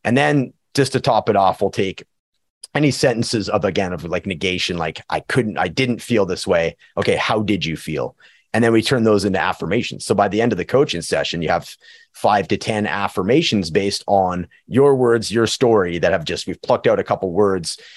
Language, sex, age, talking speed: English, male, 30-49, 215 wpm